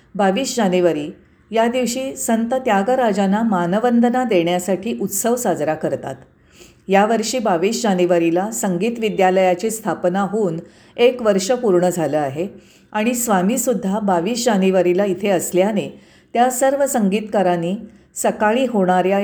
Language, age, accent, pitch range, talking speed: Marathi, 50-69, native, 180-235 Hz, 105 wpm